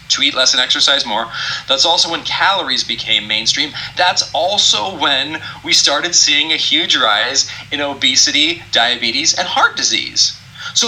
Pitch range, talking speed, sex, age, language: 125-190 Hz, 155 wpm, male, 30-49, English